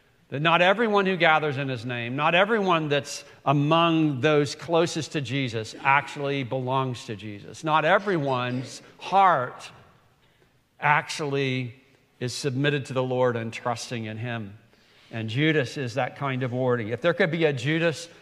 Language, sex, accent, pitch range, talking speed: English, male, American, 125-165 Hz, 150 wpm